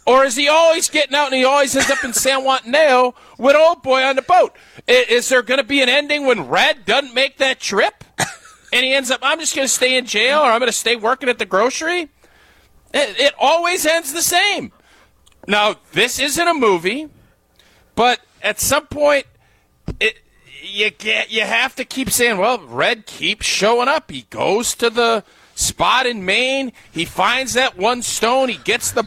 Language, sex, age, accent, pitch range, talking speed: English, male, 40-59, American, 230-285 Hz, 200 wpm